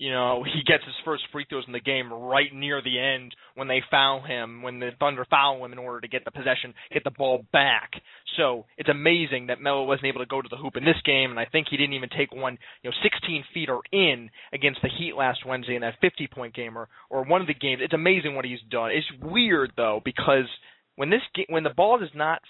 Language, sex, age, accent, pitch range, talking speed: English, male, 20-39, American, 125-150 Hz, 250 wpm